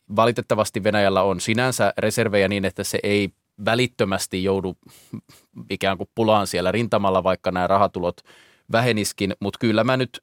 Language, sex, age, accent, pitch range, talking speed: Finnish, male, 20-39, native, 95-110 Hz, 140 wpm